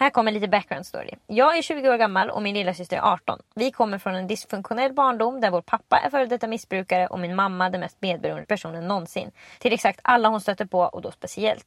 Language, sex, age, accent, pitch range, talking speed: English, female, 20-39, Swedish, 190-260 Hz, 235 wpm